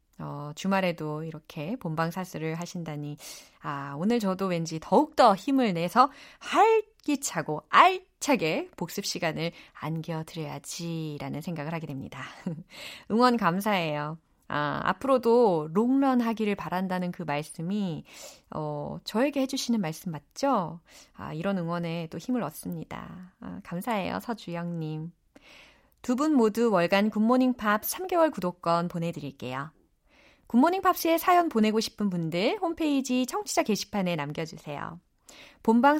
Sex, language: female, Korean